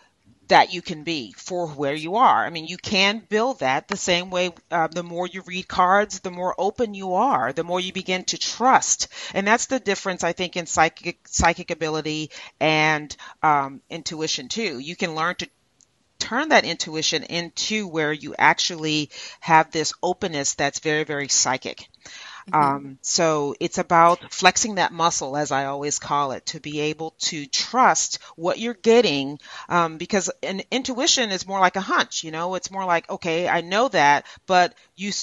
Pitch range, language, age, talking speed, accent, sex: 150-185 Hz, English, 40-59, 180 wpm, American, female